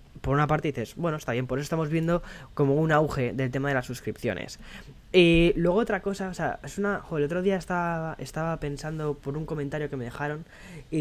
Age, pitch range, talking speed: 10-29, 125-155 Hz, 225 wpm